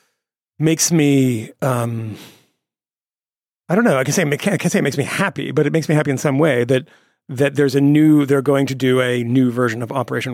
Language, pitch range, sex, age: English, 120-145 Hz, male, 40-59